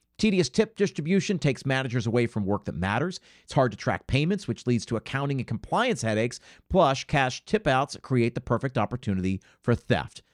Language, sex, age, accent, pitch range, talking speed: English, male, 50-69, American, 110-155 Hz, 180 wpm